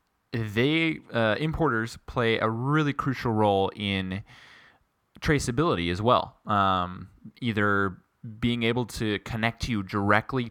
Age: 20-39